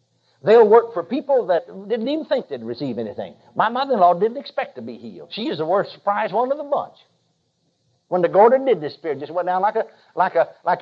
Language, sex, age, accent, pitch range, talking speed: English, male, 50-69, American, 195-300 Hz, 235 wpm